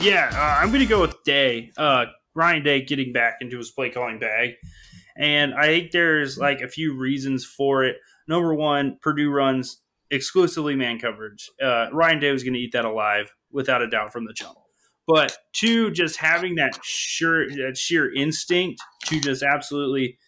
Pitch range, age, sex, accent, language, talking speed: 125-155 Hz, 20-39, male, American, English, 185 wpm